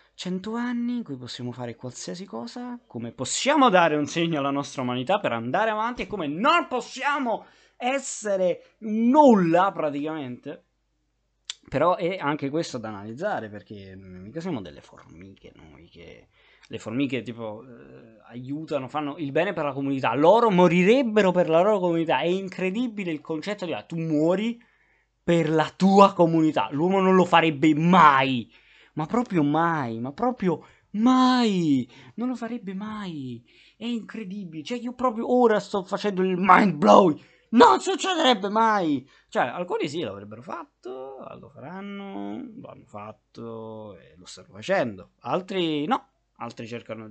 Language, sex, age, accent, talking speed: Italian, male, 20-39, native, 150 wpm